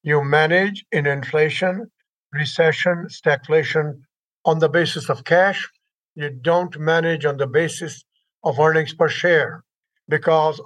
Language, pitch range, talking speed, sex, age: English, 150-180 Hz, 125 wpm, male, 60-79